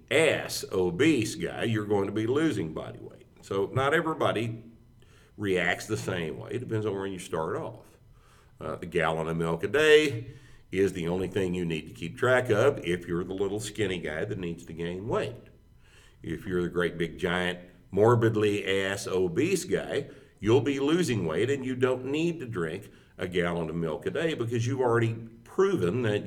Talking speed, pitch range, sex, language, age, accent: 190 wpm, 85-115 Hz, male, English, 50-69, American